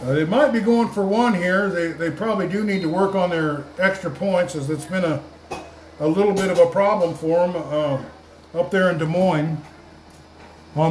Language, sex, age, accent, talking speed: English, male, 50-69, American, 210 wpm